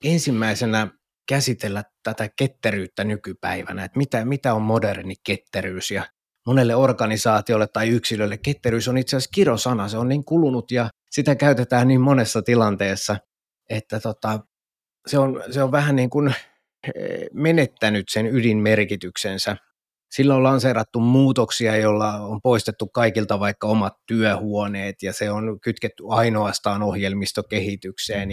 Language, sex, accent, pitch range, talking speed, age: Finnish, male, native, 105-125 Hz, 125 wpm, 30-49